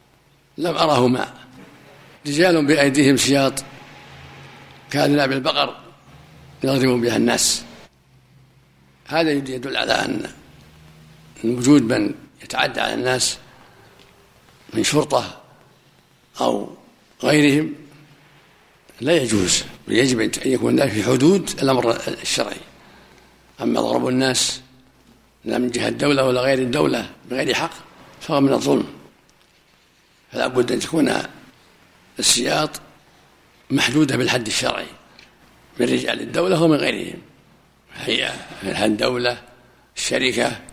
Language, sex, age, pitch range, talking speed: Arabic, male, 60-79, 125-145 Hz, 95 wpm